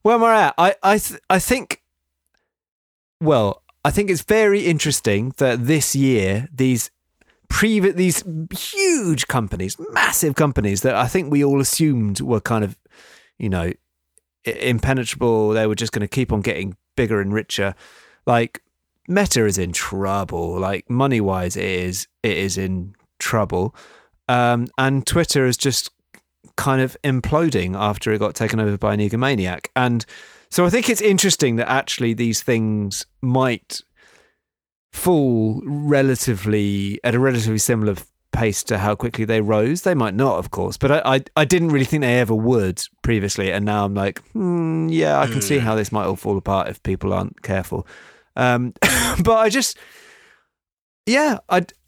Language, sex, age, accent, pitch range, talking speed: English, male, 30-49, British, 105-155 Hz, 165 wpm